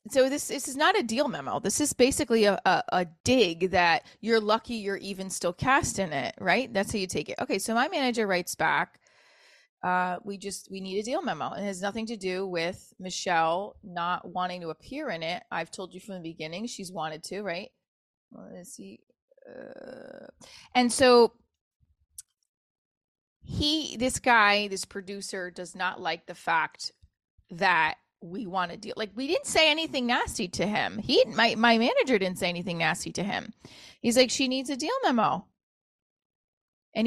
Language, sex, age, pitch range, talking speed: English, female, 20-39, 185-240 Hz, 185 wpm